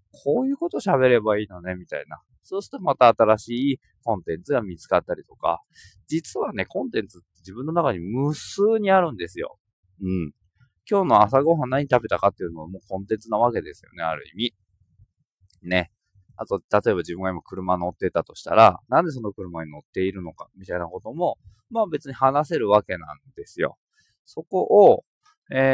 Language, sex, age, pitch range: Japanese, male, 20-39, 95-140 Hz